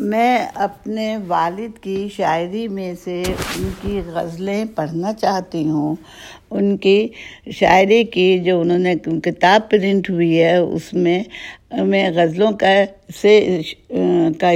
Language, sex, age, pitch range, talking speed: Urdu, female, 60-79, 175-220 Hz, 130 wpm